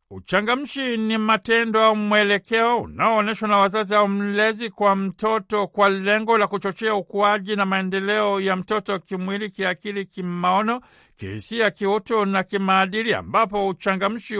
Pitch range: 195-220 Hz